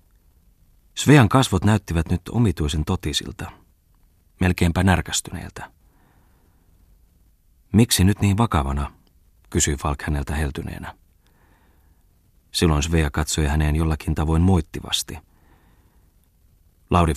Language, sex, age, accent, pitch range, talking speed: Finnish, male, 30-49, native, 80-90 Hz, 85 wpm